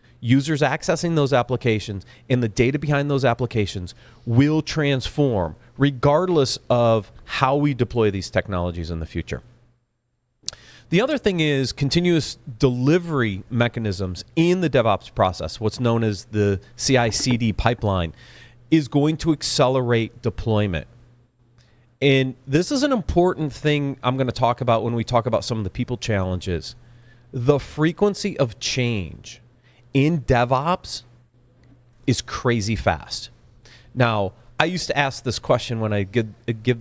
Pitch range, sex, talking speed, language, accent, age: 110-140 Hz, male, 135 wpm, English, American, 40-59